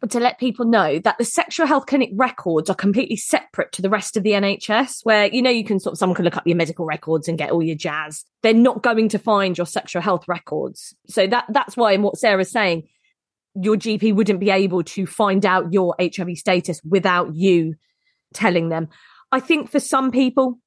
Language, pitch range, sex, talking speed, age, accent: English, 175-235 Hz, female, 220 wpm, 20-39, British